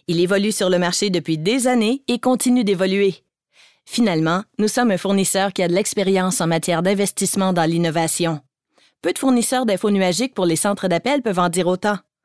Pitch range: 175-220 Hz